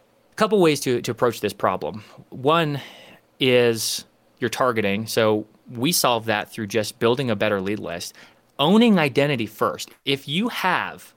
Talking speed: 150 wpm